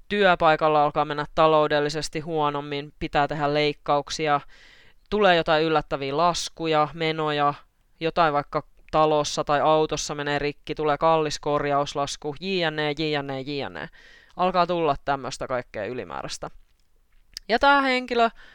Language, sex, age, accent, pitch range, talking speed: Finnish, female, 20-39, native, 145-165 Hz, 115 wpm